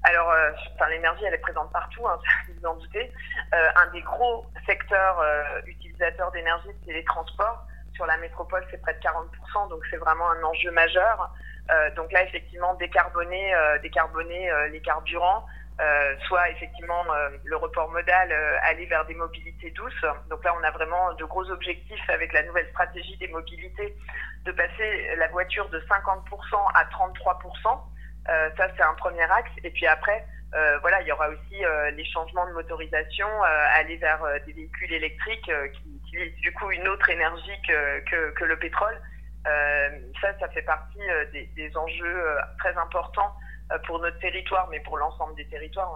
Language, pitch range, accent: French, 155-185 Hz, French